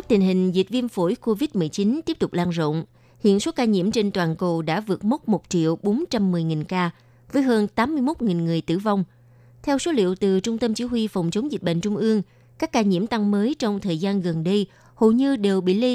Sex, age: female, 20-39